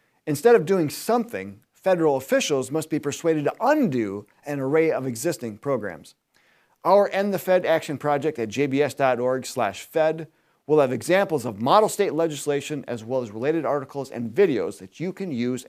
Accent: American